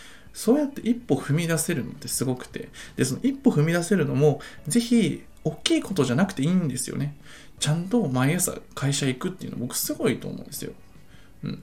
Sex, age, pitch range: male, 20-39, 140-230 Hz